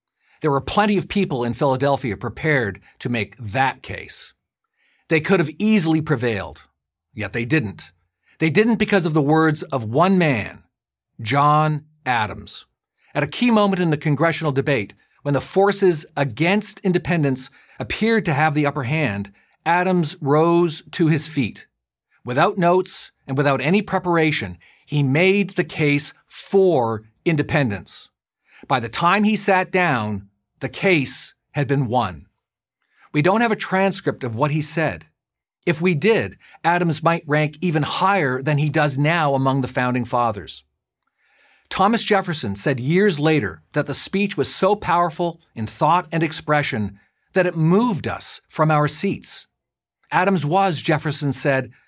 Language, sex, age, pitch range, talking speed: English, male, 50-69, 135-180 Hz, 150 wpm